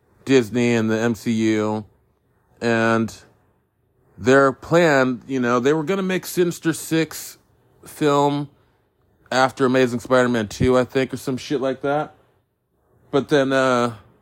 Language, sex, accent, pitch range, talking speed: English, male, American, 115-150 Hz, 130 wpm